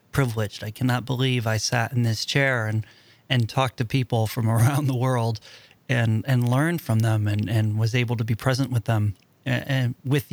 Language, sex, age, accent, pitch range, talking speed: English, male, 40-59, American, 120-135 Hz, 205 wpm